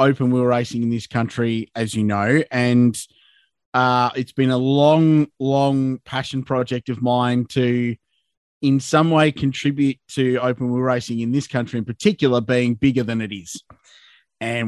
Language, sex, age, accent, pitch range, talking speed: English, male, 30-49, Australian, 125-150 Hz, 165 wpm